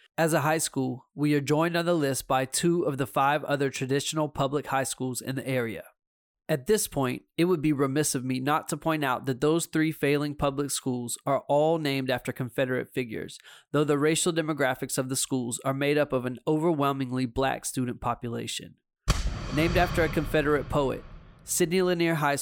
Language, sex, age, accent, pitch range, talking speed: English, male, 20-39, American, 130-155 Hz, 195 wpm